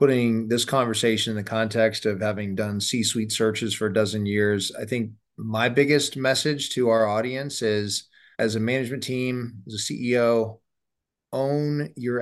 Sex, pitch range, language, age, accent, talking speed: male, 105-125 Hz, English, 20-39, American, 160 wpm